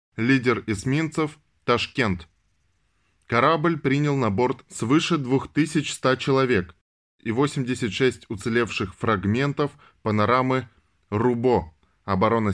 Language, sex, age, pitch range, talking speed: Russian, male, 20-39, 100-135 Hz, 85 wpm